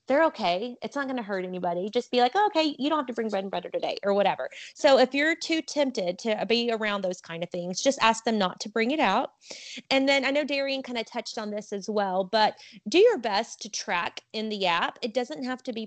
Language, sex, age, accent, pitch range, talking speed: English, female, 30-49, American, 215-260 Hz, 260 wpm